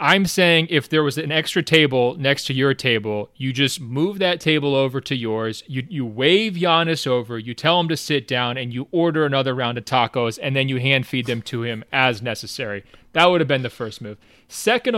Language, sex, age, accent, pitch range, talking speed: English, male, 30-49, American, 130-160 Hz, 225 wpm